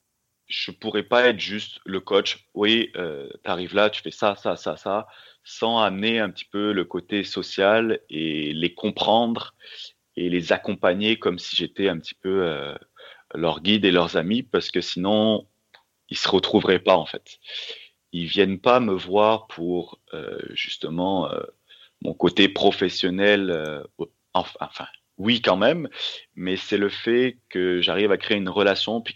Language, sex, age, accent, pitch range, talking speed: French, male, 30-49, French, 90-110 Hz, 170 wpm